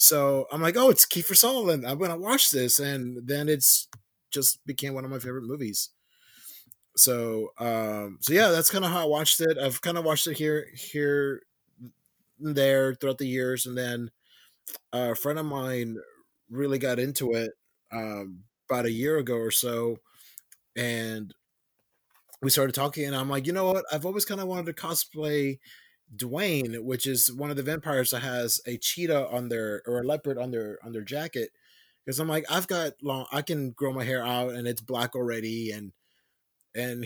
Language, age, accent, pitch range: English, 20-39, American, 120-150 Hz